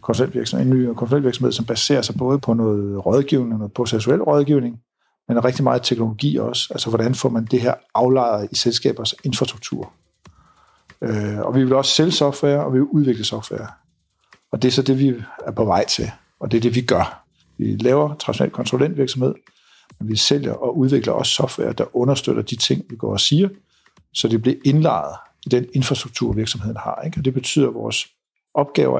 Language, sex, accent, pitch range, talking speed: Danish, male, native, 115-140 Hz, 185 wpm